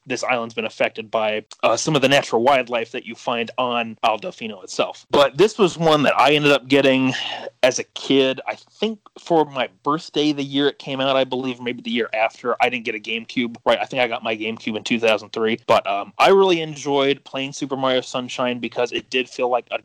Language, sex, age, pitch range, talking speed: English, male, 30-49, 120-140 Hz, 225 wpm